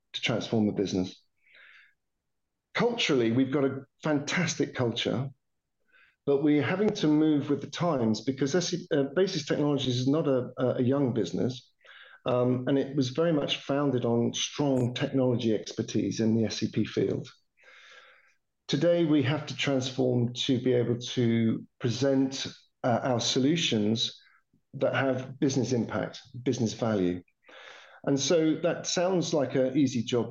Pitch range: 120-145 Hz